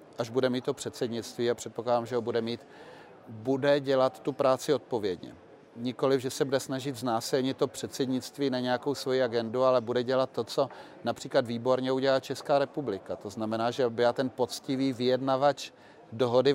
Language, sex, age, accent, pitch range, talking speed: Czech, male, 40-59, native, 115-135 Hz, 165 wpm